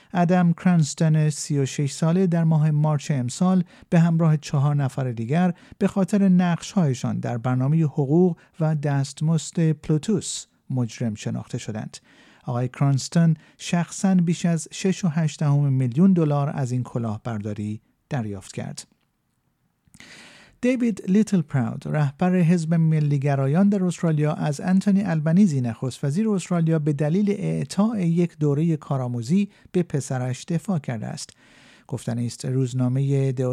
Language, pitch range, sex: Persian, 135-180 Hz, male